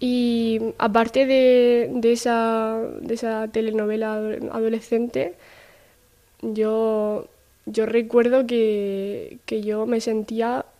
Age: 10-29